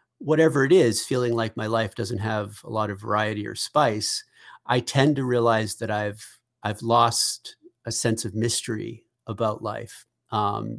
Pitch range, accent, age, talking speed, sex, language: 110-130 Hz, American, 40-59, 165 wpm, male, English